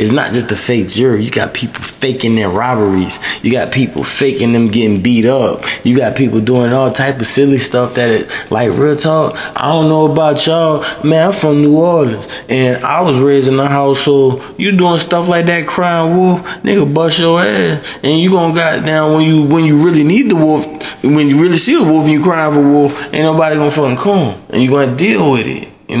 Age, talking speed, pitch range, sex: 20-39, 240 wpm, 120-155 Hz, male